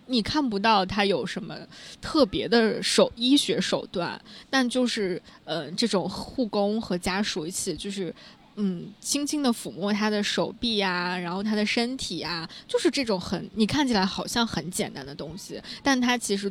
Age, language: 20-39, Chinese